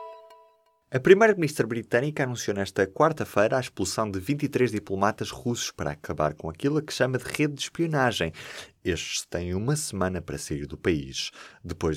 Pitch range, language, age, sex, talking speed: 85-135 Hz, Portuguese, 20-39, male, 155 wpm